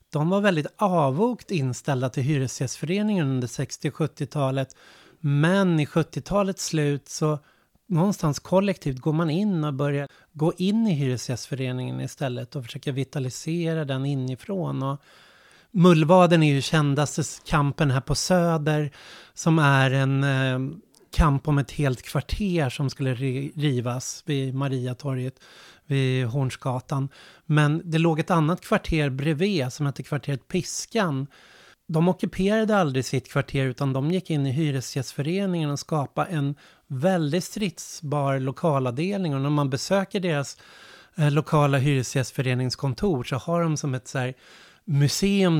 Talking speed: 130 wpm